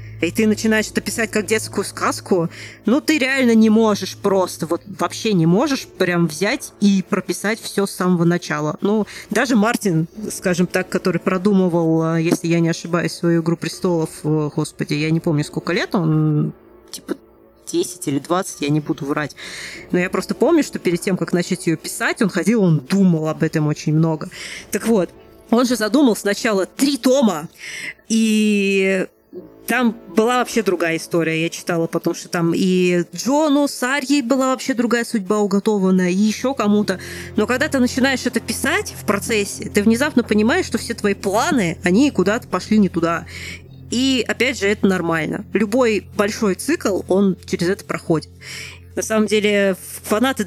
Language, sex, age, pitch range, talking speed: Russian, female, 20-39, 170-225 Hz, 170 wpm